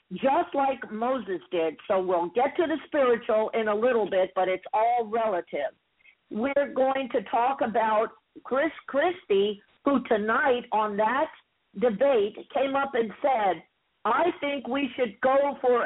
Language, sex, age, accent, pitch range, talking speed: English, female, 50-69, American, 215-300 Hz, 150 wpm